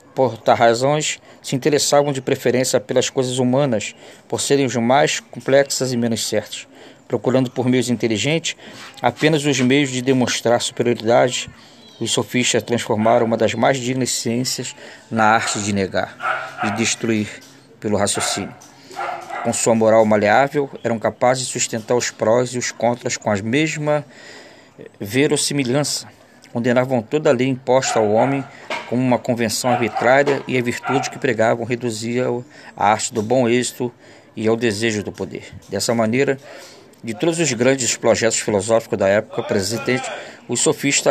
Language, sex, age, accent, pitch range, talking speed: Portuguese, male, 20-39, Brazilian, 115-135 Hz, 145 wpm